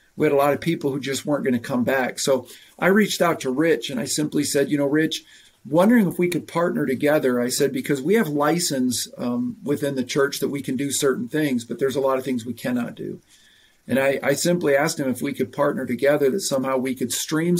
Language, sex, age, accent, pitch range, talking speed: English, male, 50-69, American, 125-150 Hz, 250 wpm